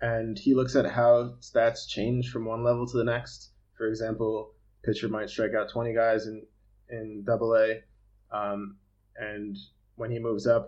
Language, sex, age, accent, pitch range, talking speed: English, male, 20-39, American, 105-120 Hz, 175 wpm